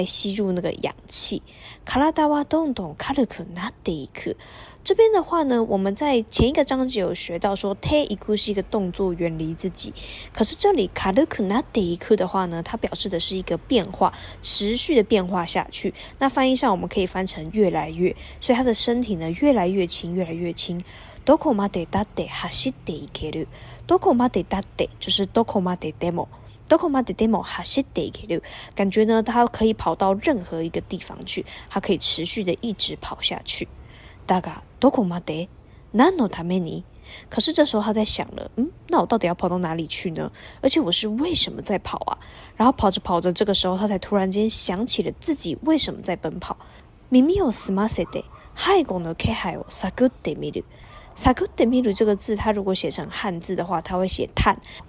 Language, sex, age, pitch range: Chinese, female, 20-39, 180-245 Hz